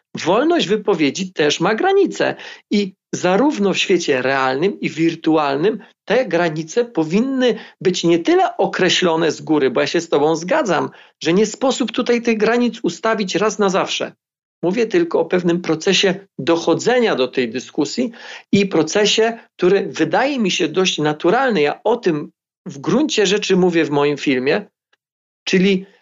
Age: 40-59